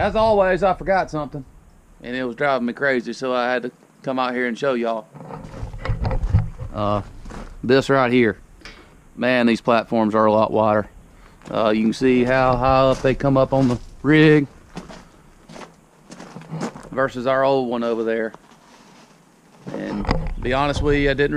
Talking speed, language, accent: 155 wpm, English, American